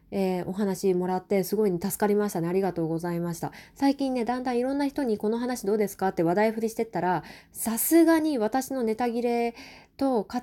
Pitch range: 170-215 Hz